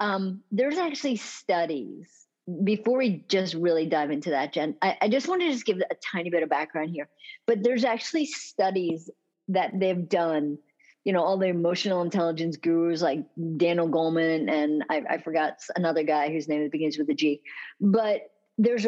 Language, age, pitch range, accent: English, 50-69, 170-230 Hz, American